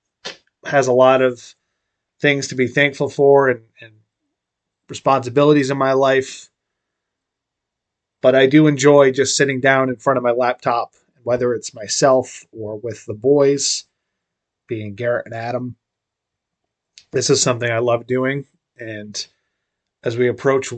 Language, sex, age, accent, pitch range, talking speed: English, male, 30-49, American, 125-145 Hz, 140 wpm